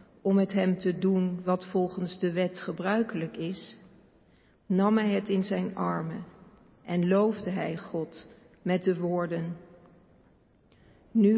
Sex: female